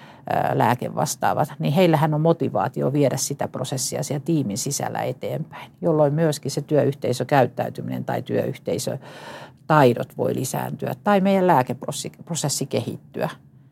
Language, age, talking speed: Finnish, 50-69, 105 wpm